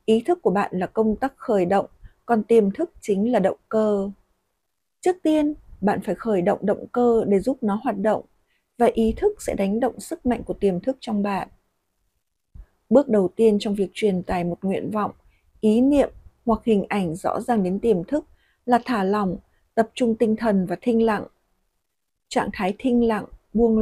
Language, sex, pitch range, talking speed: Vietnamese, female, 200-240 Hz, 195 wpm